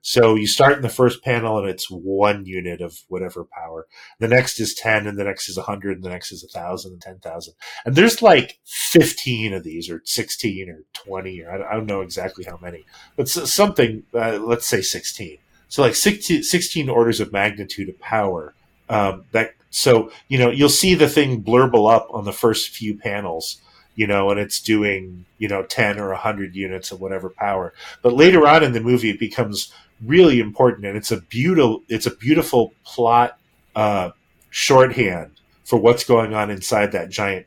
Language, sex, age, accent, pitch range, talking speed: English, male, 30-49, American, 100-120 Hz, 190 wpm